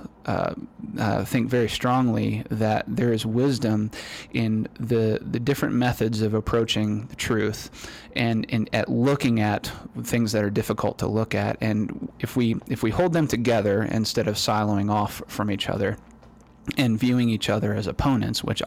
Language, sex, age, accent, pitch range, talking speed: English, male, 20-39, American, 105-120 Hz, 165 wpm